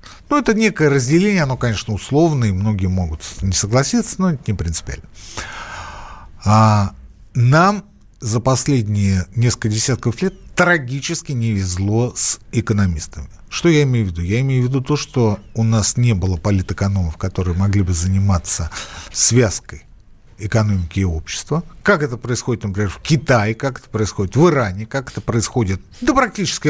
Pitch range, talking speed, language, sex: 105-155 Hz, 150 wpm, Russian, male